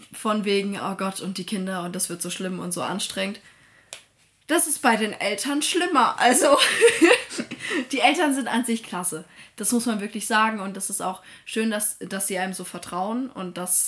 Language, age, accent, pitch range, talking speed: German, 20-39, German, 190-240 Hz, 200 wpm